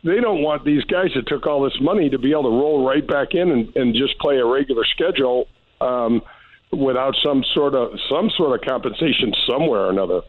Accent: American